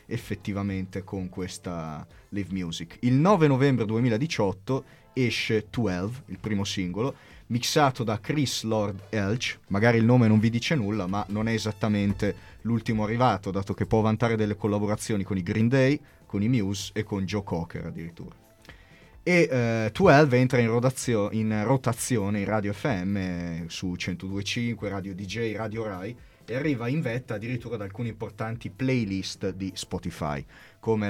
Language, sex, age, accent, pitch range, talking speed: Italian, male, 30-49, native, 95-120 Hz, 150 wpm